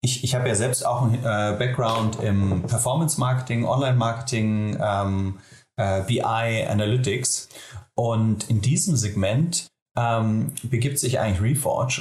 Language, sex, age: German, male, 30-49